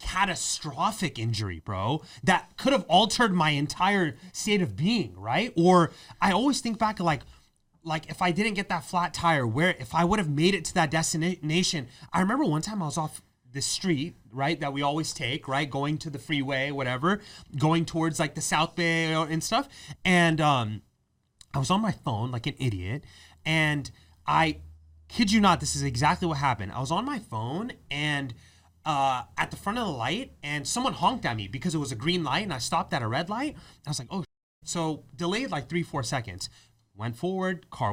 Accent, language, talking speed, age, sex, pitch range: American, English, 205 wpm, 30-49, male, 125-180 Hz